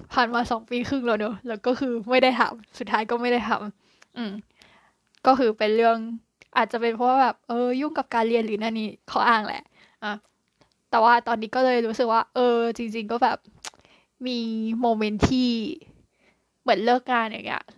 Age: 10-29